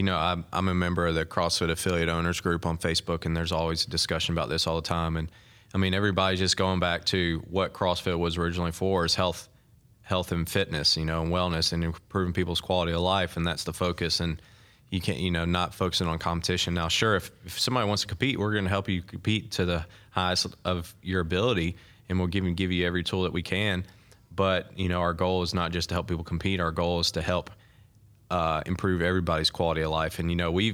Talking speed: 240 wpm